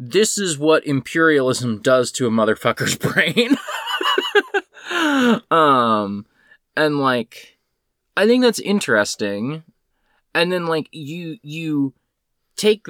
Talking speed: 100 wpm